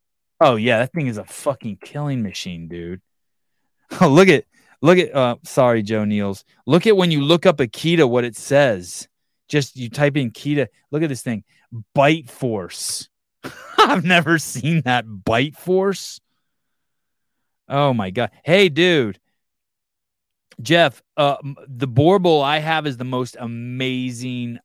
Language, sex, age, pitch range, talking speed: English, male, 20-39, 100-140 Hz, 150 wpm